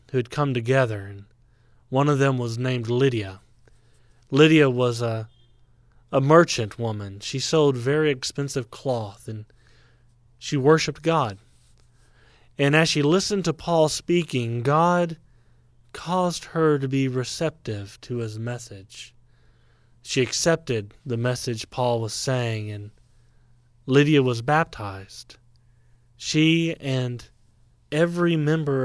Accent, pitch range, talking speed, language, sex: American, 115-140 Hz, 120 wpm, English, male